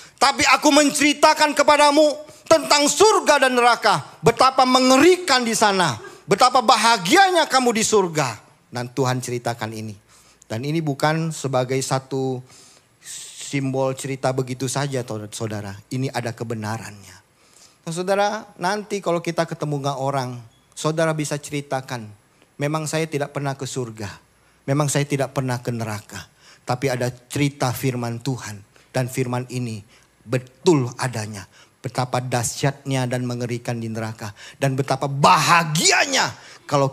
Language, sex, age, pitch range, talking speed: Indonesian, male, 40-59, 120-150 Hz, 125 wpm